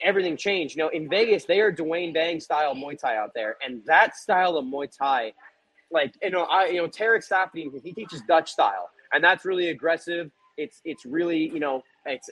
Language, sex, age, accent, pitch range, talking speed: English, male, 20-39, American, 160-215 Hz, 210 wpm